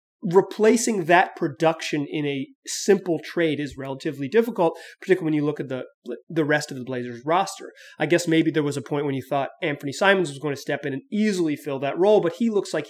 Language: English